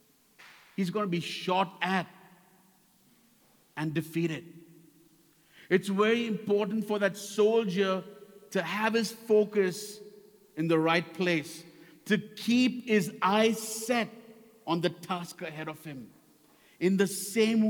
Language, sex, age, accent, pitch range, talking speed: English, male, 50-69, Indian, 160-210 Hz, 120 wpm